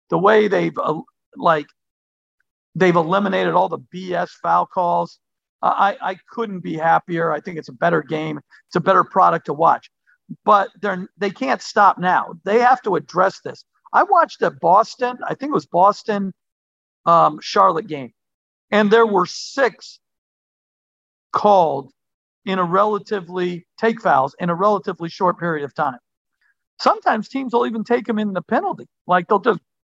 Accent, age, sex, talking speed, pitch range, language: American, 50-69, male, 170 wpm, 175-225 Hz, English